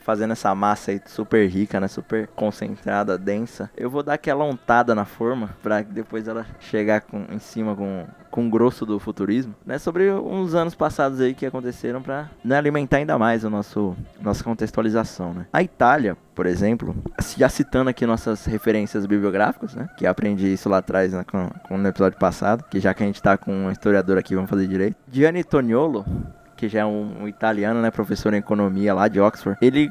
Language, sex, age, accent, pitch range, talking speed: Portuguese, male, 20-39, Brazilian, 100-125 Hz, 200 wpm